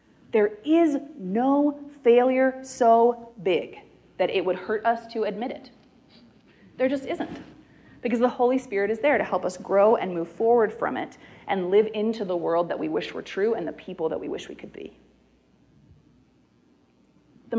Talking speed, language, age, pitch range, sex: 175 wpm, English, 30-49, 190-255 Hz, female